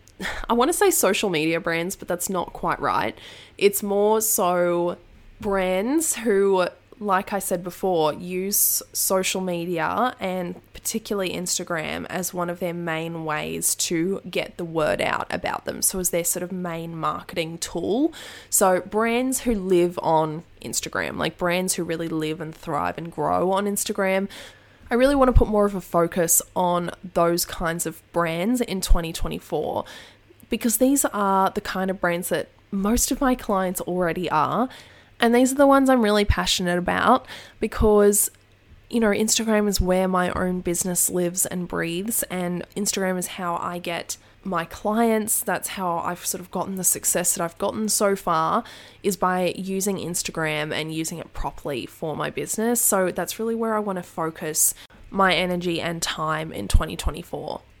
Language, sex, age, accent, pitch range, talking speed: English, female, 20-39, Australian, 170-205 Hz, 170 wpm